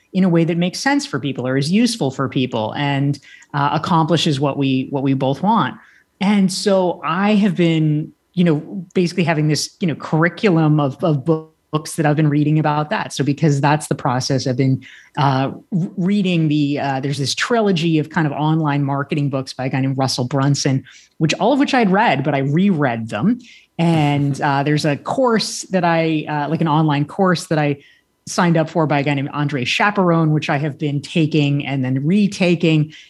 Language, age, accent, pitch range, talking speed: English, 30-49, American, 140-185 Hz, 200 wpm